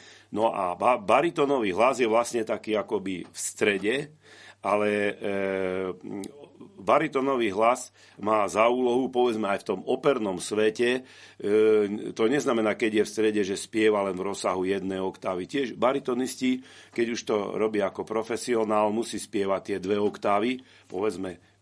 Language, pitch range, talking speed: Slovak, 100-120 Hz, 145 wpm